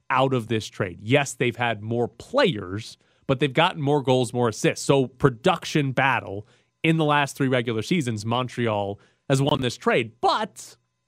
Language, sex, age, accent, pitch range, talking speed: English, male, 30-49, American, 115-145 Hz, 170 wpm